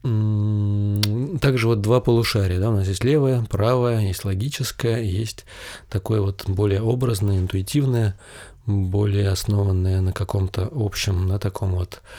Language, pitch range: Russian, 100-120 Hz